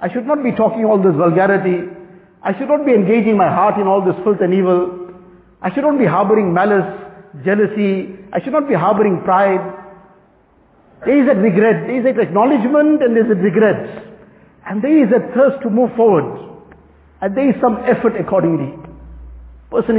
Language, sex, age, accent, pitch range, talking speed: English, male, 50-69, Indian, 180-215 Hz, 185 wpm